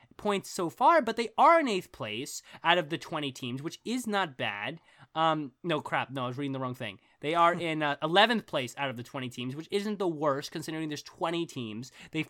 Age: 20-39